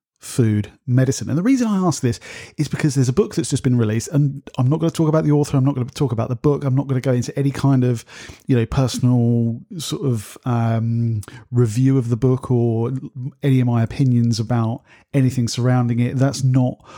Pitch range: 115-140 Hz